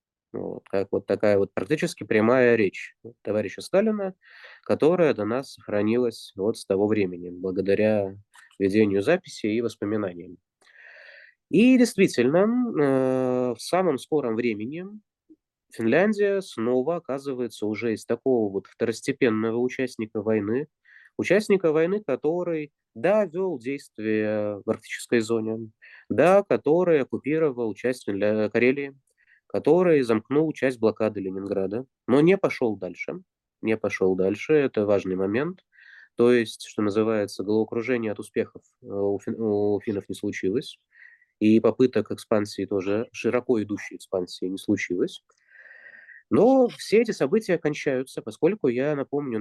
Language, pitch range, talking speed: Russian, 105-145 Hz, 120 wpm